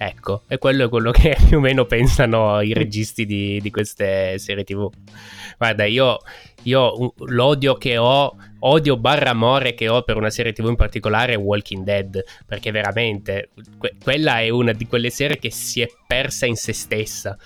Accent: native